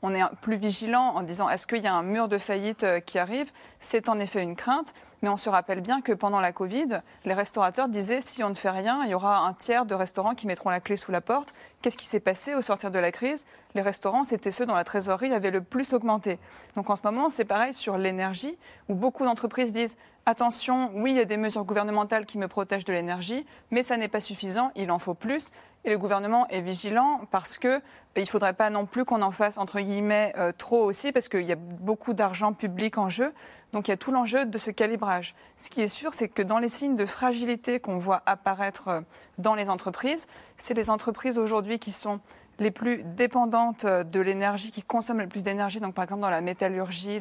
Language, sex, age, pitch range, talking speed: French, female, 40-59, 195-240 Hz, 240 wpm